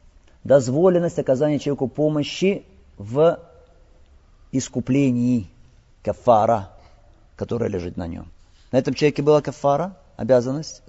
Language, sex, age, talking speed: Russian, male, 50-69, 95 wpm